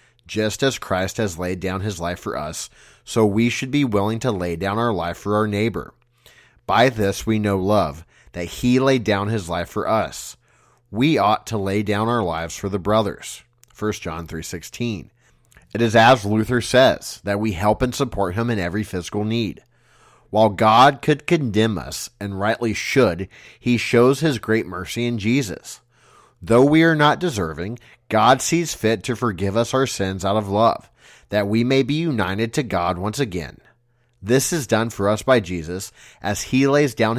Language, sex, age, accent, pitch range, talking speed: English, male, 30-49, American, 100-120 Hz, 185 wpm